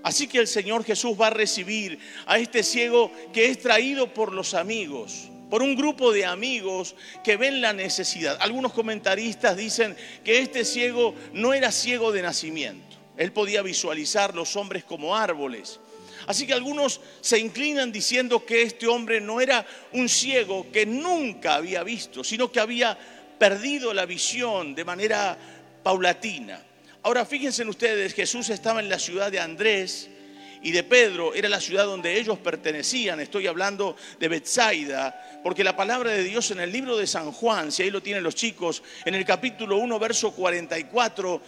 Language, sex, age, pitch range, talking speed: Spanish, male, 50-69, 185-240 Hz, 170 wpm